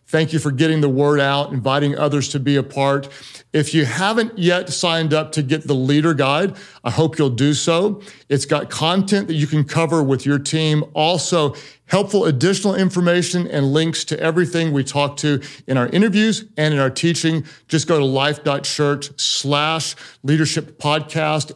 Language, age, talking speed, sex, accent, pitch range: English, 50-69, 180 wpm, male, American, 140-160 Hz